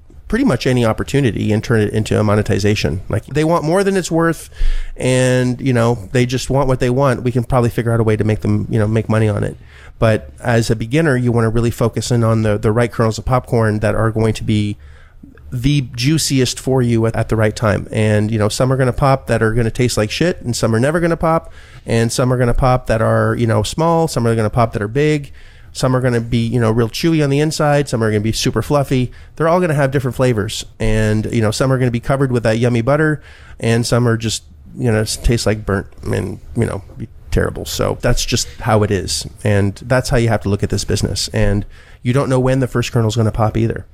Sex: male